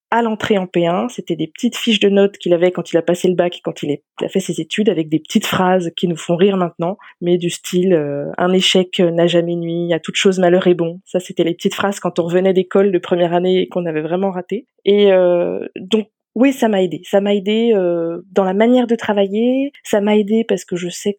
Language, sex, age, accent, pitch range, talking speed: French, female, 20-39, French, 180-220 Hz, 250 wpm